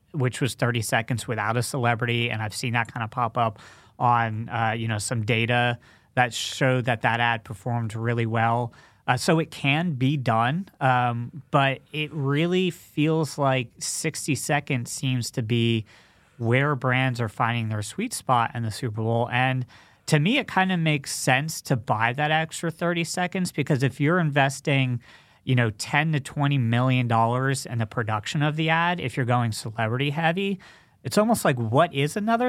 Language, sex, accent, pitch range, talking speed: English, male, American, 115-145 Hz, 180 wpm